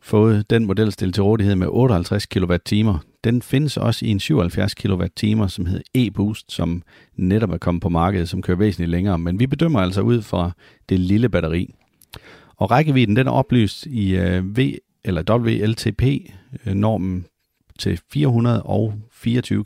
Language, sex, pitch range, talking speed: Danish, male, 90-115 Hz, 140 wpm